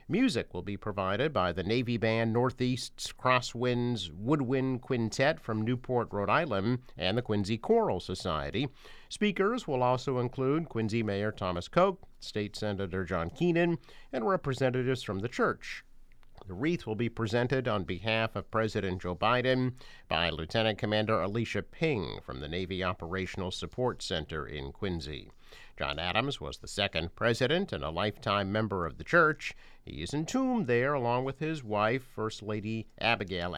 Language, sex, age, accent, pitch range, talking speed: English, male, 50-69, American, 95-130 Hz, 155 wpm